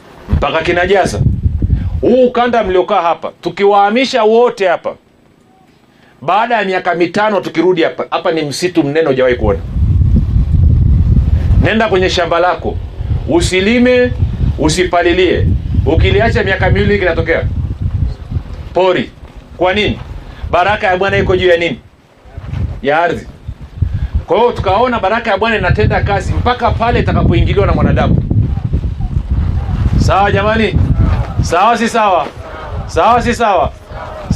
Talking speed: 115 wpm